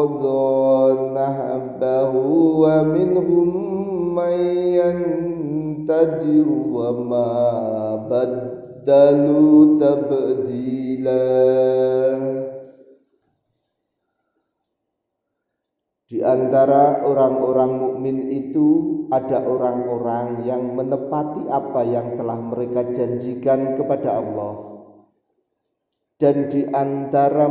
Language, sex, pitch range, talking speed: Indonesian, male, 130-160 Hz, 50 wpm